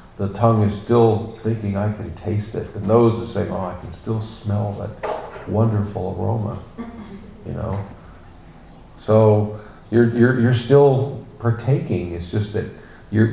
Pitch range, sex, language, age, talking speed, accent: 100-115 Hz, male, English, 50-69, 150 wpm, American